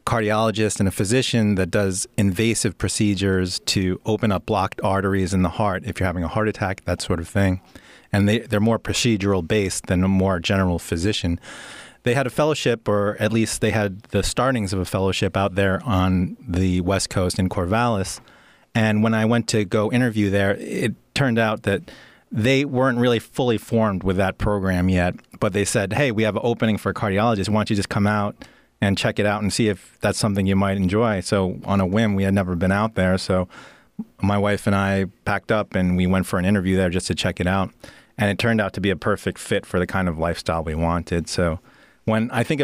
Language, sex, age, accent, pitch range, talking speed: English, male, 30-49, American, 95-110 Hz, 220 wpm